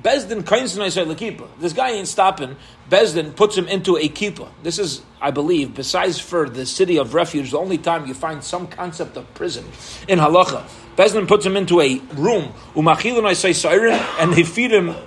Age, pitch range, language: 30-49, 160-205 Hz, English